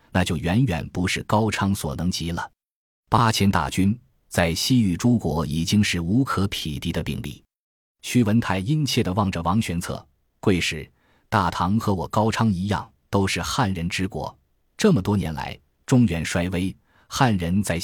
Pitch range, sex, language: 85-110 Hz, male, Chinese